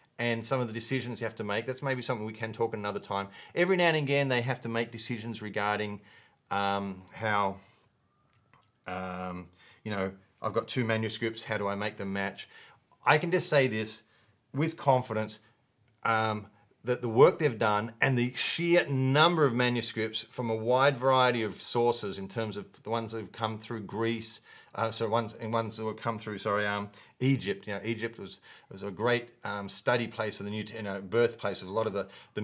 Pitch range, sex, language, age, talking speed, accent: 105-120 Hz, male, English, 40-59, 205 wpm, Australian